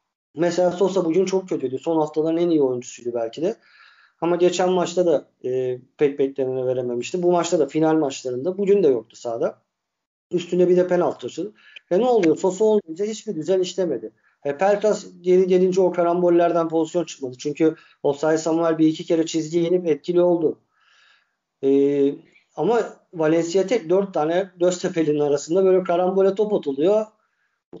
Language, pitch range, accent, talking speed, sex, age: Turkish, 145-185 Hz, native, 160 wpm, male, 50-69